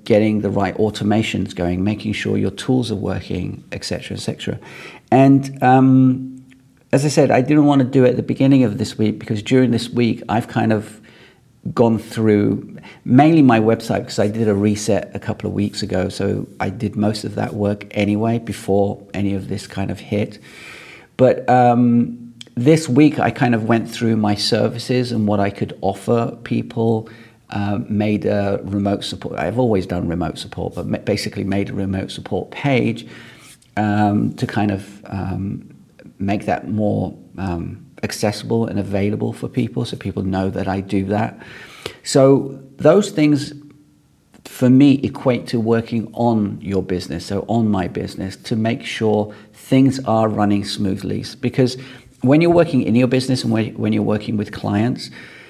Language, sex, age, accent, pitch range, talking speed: English, male, 40-59, British, 100-125 Hz, 170 wpm